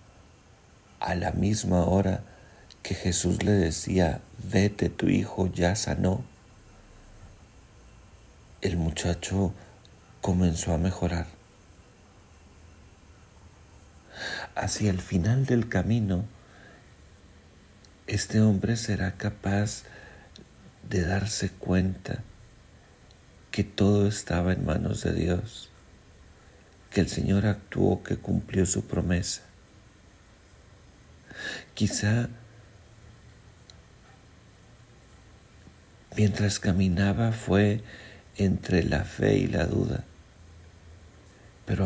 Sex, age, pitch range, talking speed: male, 50-69, 90-105 Hz, 80 wpm